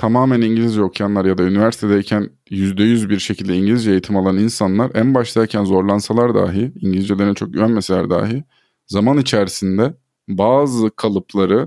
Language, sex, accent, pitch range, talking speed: Turkish, male, native, 100-130 Hz, 135 wpm